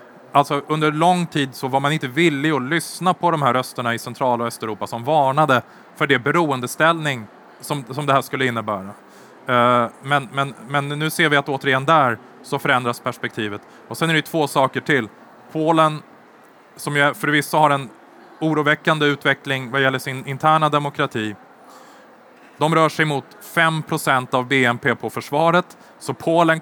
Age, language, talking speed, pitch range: 20-39, Swedish, 160 wpm, 125-155 Hz